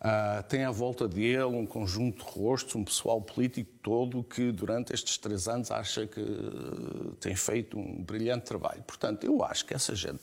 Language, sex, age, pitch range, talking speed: Portuguese, male, 50-69, 105-150 Hz, 190 wpm